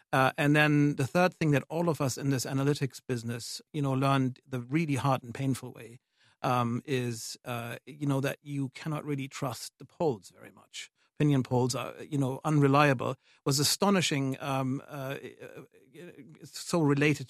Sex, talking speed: male, 175 wpm